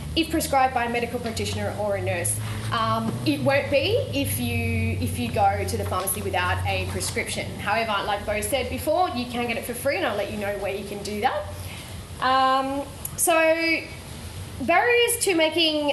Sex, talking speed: female, 190 wpm